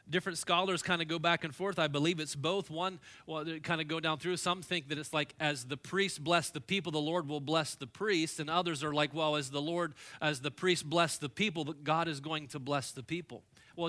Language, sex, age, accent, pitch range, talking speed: English, male, 30-49, American, 135-170 Hz, 250 wpm